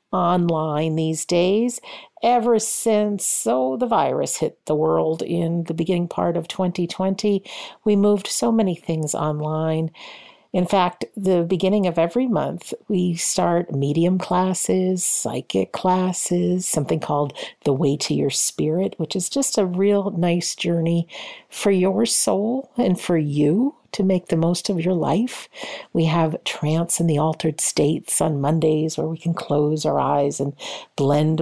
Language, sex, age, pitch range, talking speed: English, female, 50-69, 155-195 Hz, 150 wpm